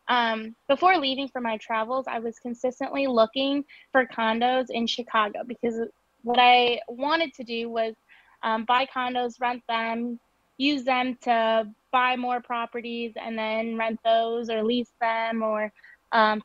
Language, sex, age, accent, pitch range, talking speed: English, female, 10-29, American, 230-255 Hz, 150 wpm